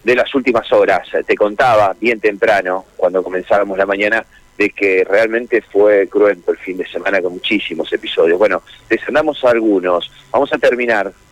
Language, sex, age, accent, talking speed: Spanish, male, 40-59, Argentinian, 165 wpm